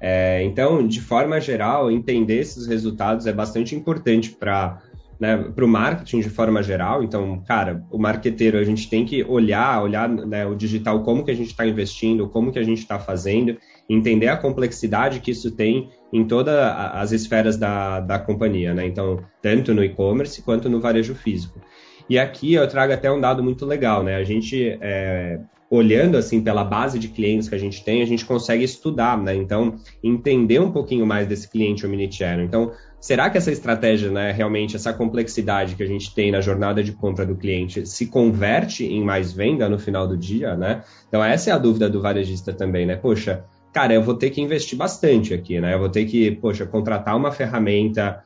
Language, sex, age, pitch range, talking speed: Portuguese, male, 10-29, 100-115 Hz, 195 wpm